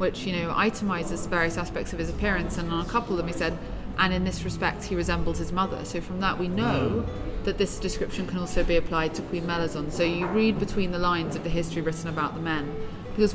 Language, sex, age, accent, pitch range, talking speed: English, female, 30-49, British, 165-195 Hz, 245 wpm